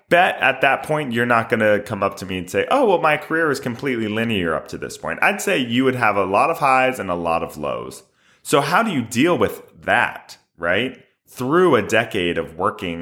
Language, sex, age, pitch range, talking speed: English, male, 20-39, 95-130 Hz, 240 wpm